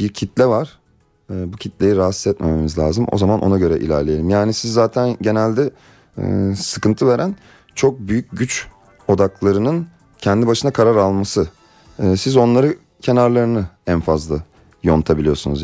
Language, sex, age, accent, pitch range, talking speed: Turkish, male, 30-49, native, 95-125 Hz, 125 wpm